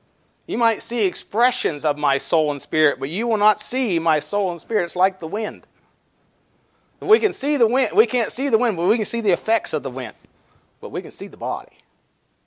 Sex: male